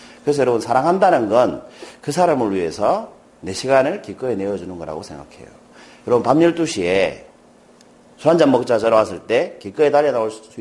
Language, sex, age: Korean, male, 40-59